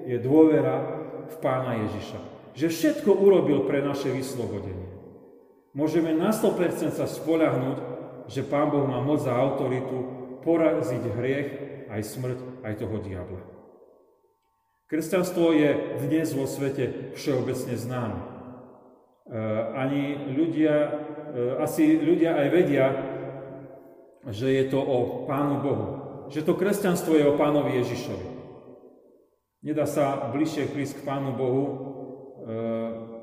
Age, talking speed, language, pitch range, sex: 40-59, 115 wpm, Slovak, 120-150 Hz, male